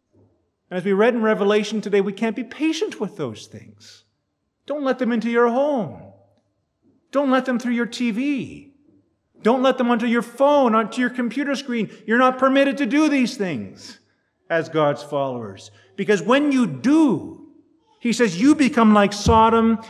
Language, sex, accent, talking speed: English, male, American, 170 wpm